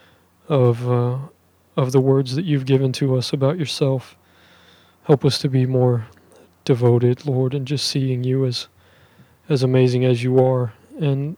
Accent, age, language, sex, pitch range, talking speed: American, 20-39, English, male, 115-140 Hz, 160 wpm